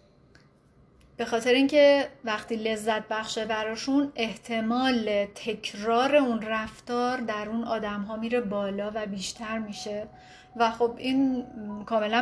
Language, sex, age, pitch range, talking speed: Persian, female, 30-49, 215-260 Hz, 120 wpm